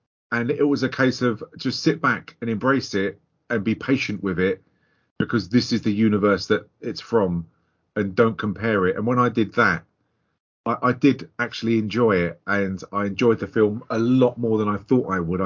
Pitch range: 100-120 Hz